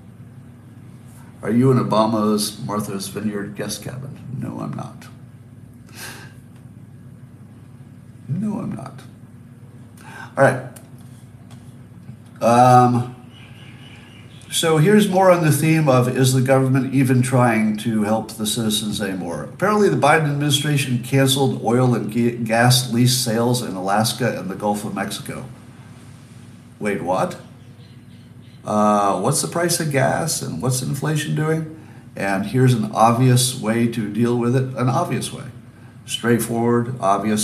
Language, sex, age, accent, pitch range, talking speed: English, male, 50-69, American, 115-130 Hz, 125 wpm